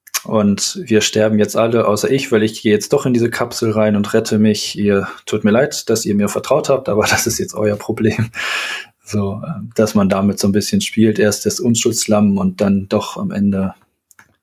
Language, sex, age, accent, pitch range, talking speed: German, male, 20-39, German, 105-120 Hz, 210 wpm